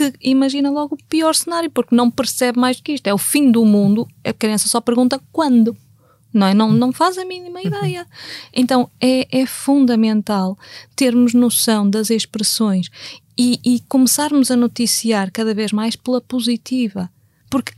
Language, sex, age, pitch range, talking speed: Portuguese, female, 20-39, 215-265 Hz, 160 wpm